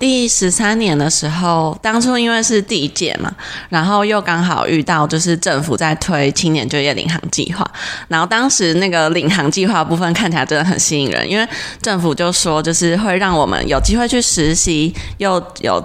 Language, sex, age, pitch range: Chinese, female, 20-39, 155-185 Hz